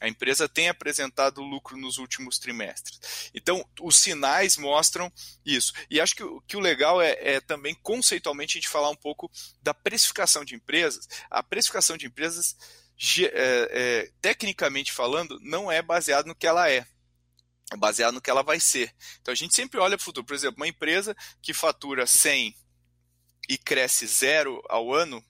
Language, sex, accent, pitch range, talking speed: Portuguese, male, Brazilian, 130-175 Hz, 165 wpm